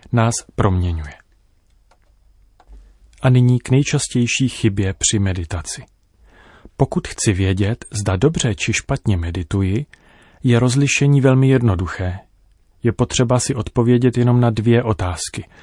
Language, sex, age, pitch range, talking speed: Czech, male, 30-49, 95-120 Hz, 110 wpm